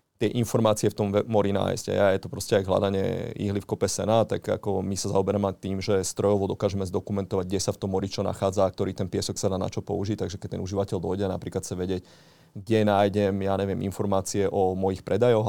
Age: 30-49